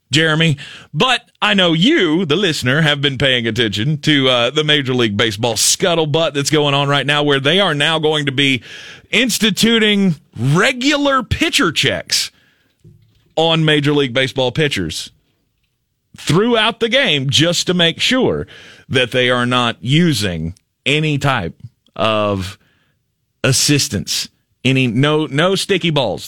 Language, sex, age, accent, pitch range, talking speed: English, male, 40-59, American, 120-165 Hz, 135 wpm